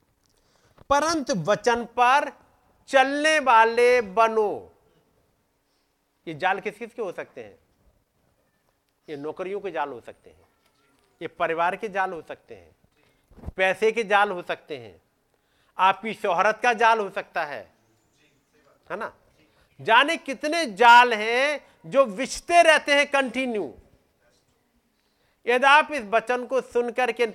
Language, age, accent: Hindi, 40-59, native